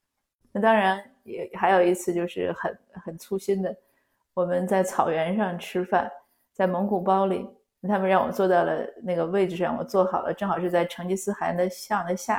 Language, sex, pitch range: Chinese, female, 180-215 Hz